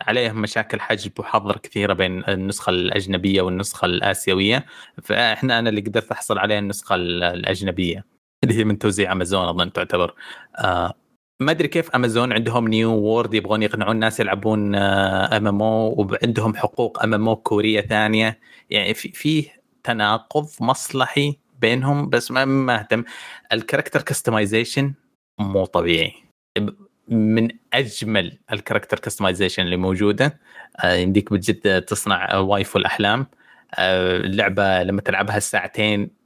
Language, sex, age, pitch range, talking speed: Arabic, male, 20-39, 95-115 Hz, 120 wpm